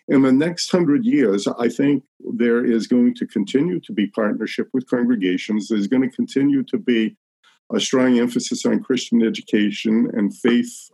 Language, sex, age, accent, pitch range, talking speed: English, male, 50-69, American, 110-140 Hz, 170 wpm